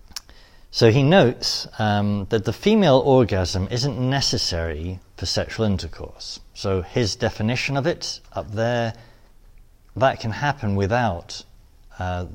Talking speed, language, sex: 120 wpm, English, male